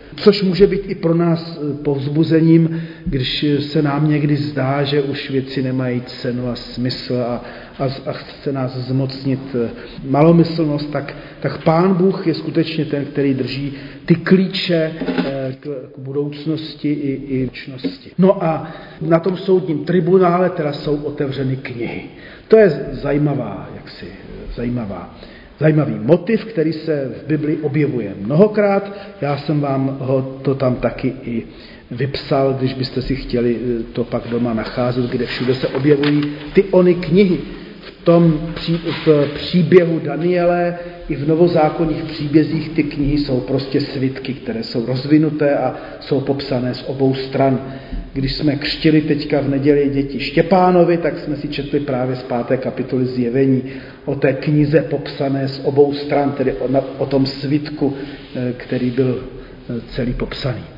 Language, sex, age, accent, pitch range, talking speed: Czech, male, 40-59, native, 135-160 Hz, 140 wpm